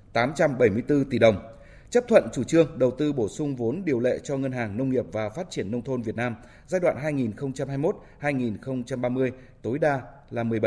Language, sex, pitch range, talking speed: Vietnamese, male, 120-155 Hz, 180 wpm